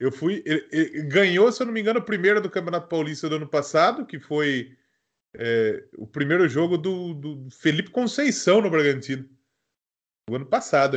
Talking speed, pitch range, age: 180 wpm, 150-225 Hz, 20-39